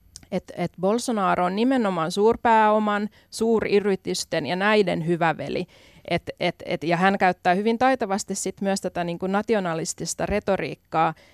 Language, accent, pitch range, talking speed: Finnish, native, 160-190 Hz, 125 wpm